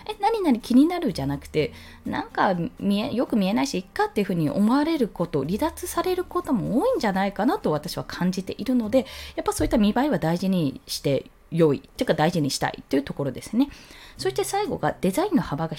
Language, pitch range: Japanese, 180-305 Hz